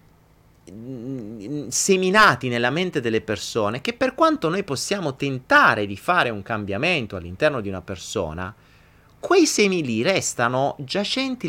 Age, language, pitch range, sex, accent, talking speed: 30-49, Italian, 105-170 Hz, male, native, 125 wpm